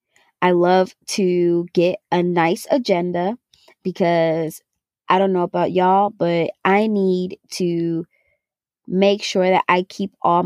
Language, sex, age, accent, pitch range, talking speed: English, female, 20-39, American, 170-195 Hz, 130 wpm